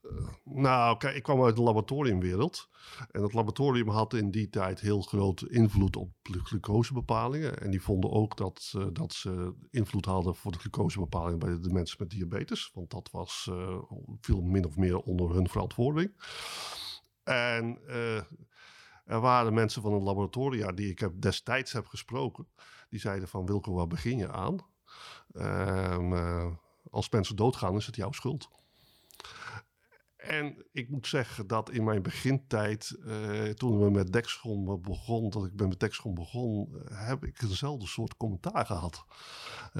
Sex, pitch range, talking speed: male, 95-120 Hz, 160 wpm